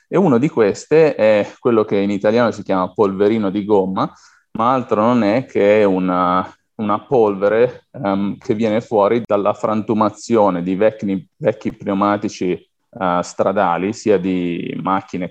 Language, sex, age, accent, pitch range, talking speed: Italian, male, 30-49, native, 95-115 Hz, 145 wpm